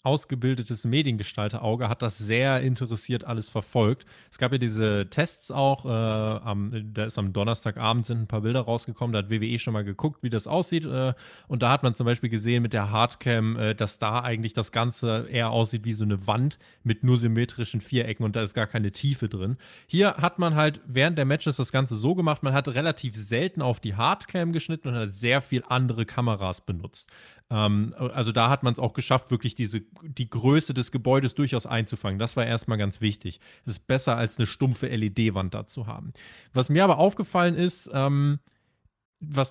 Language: German